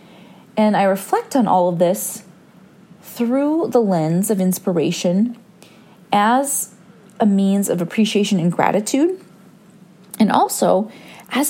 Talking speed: 115 wpm